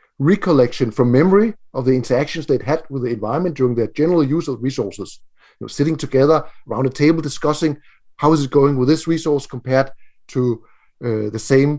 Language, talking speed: English, 190 wpm